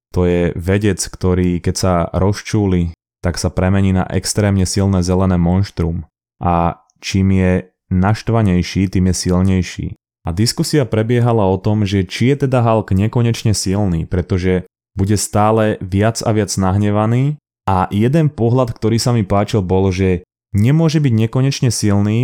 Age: 20-39